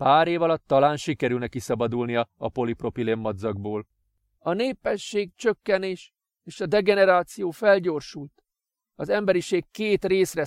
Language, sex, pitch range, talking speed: Hungarian, male, 155-190 Hz, 115 wpm